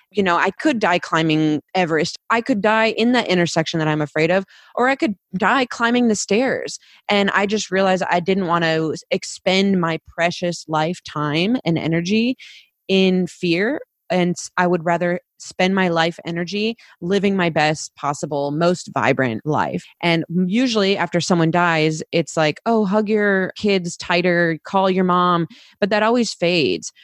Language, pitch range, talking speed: English, 160-195 Hz, 165 wpm